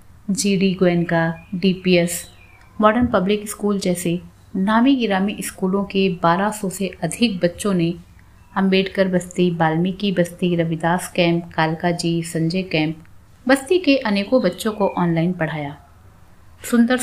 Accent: native